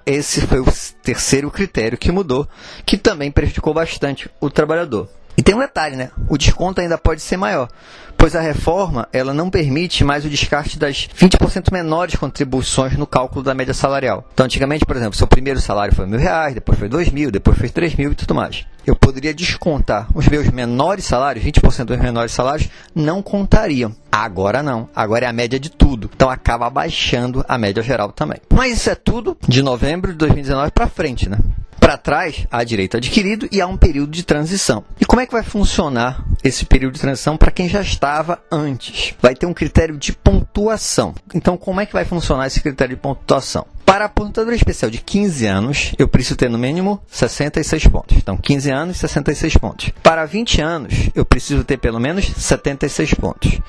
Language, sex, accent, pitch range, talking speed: Portuguese, male, Brazilian, 125-170 Hz, 195 wpm